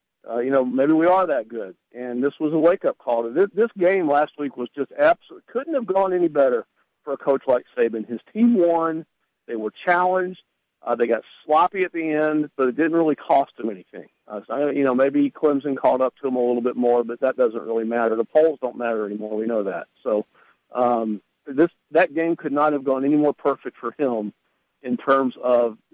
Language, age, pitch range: English, 50-69, 125-160 Hz